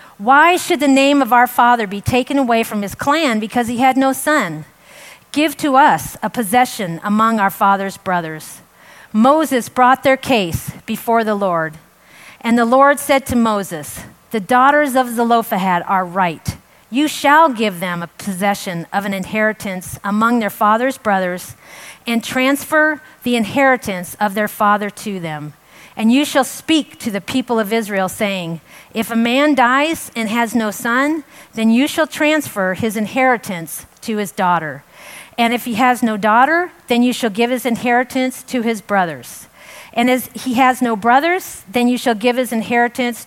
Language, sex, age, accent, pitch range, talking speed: English, female, 40-59, American, 200-255 Hz, 170 wpm